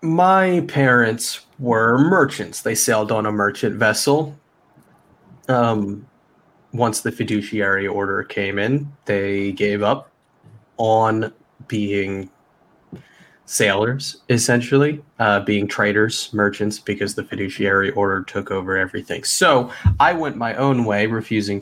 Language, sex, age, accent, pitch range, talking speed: English, male, 30-49, American, 105-135 Hz, 115 wpm